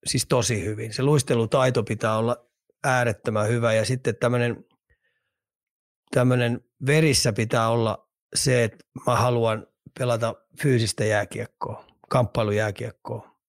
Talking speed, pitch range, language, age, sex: 100 wpm, 110-135 Hz, Finnish, 30-49, male